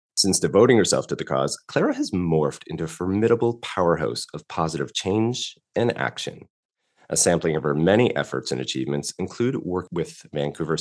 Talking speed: 165 wpm